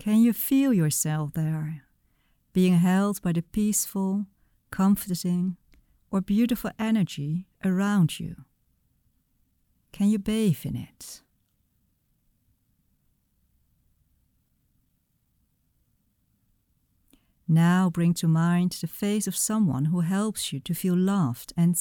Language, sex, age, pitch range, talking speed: Dutch, female, 50-69, 160-200 Hz, 100 wpm